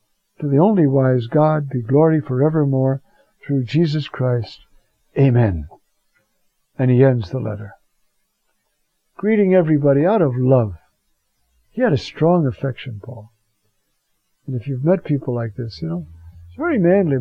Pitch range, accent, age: 120-160 Hz, American, 60-79